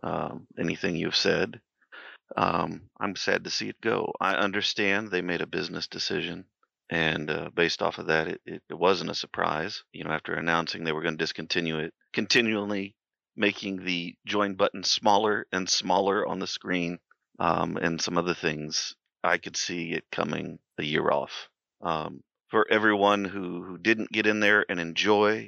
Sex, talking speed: male, 175 wpm